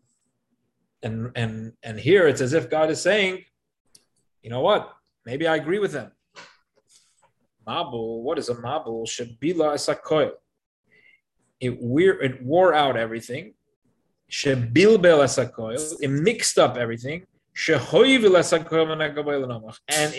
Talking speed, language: 100 wpm, English